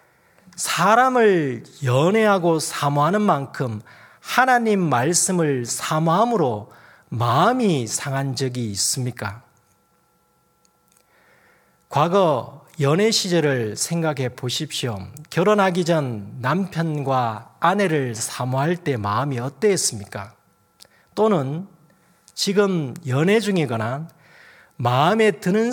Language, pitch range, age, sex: Korean, 125-185 Hz, 40-59, male